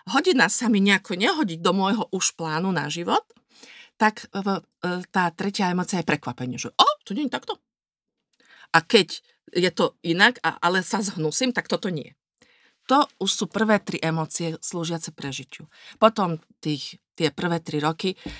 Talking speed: 155 wpm